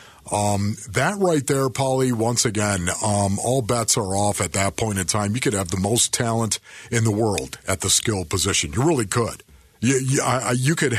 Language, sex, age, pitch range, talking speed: English, male, 50-69, 100-130 Hz, 200 wpm